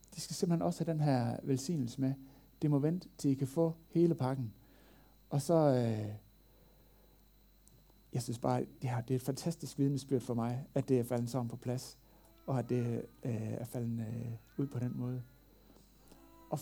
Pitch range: 125-160 Hz